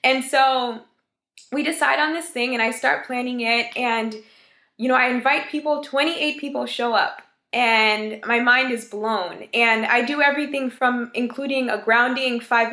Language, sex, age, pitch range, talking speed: English, female, 20-39, 230-270 Hz, 170 wpm